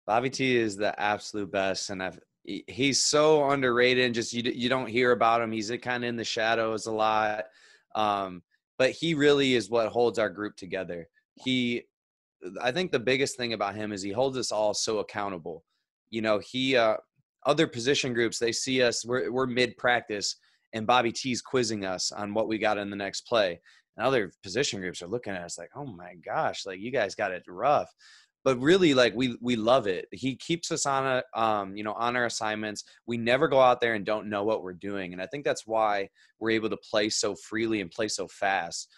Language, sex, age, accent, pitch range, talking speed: English, male, 20-39, American, 105-130 Hz, 215 wpm